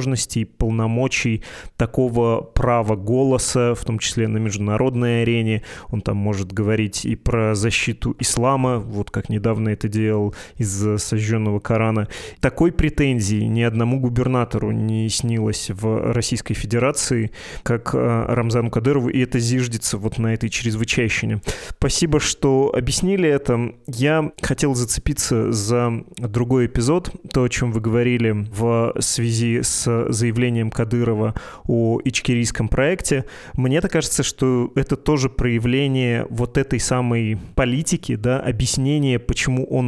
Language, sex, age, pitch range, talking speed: Russian, male, 20-39, 115-130 Hz, 125 wpm